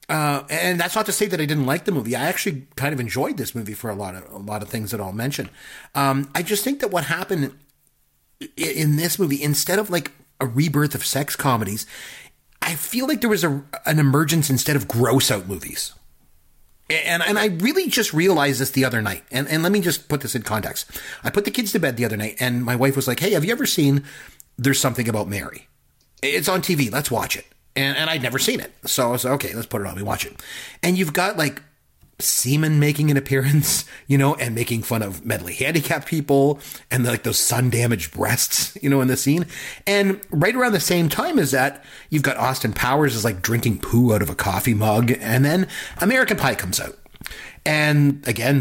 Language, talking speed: English, 230 wpm